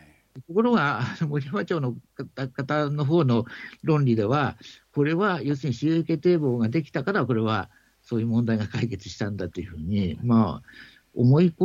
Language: Japanese